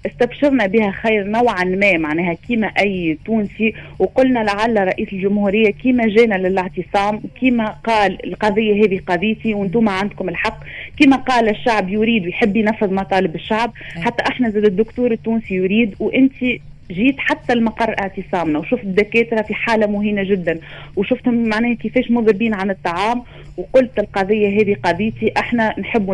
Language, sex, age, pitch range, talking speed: Arabic, female, 30-49, 190-235 Hz, 140 wpm